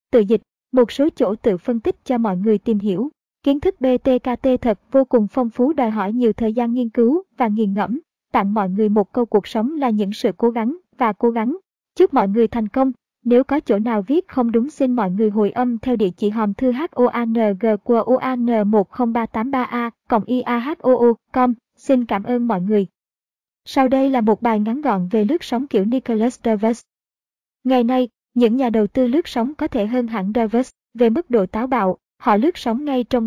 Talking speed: 205 wpm